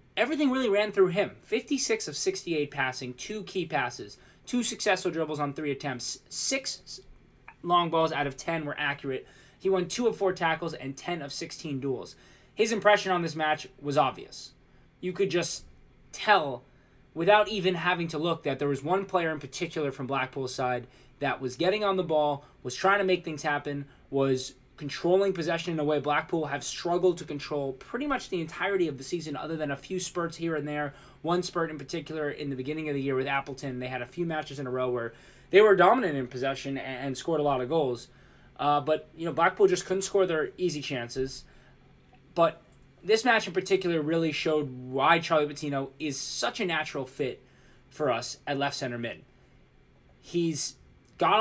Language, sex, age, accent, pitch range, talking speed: English, male, 20-39, American, 135-180 Hz, 195 wpm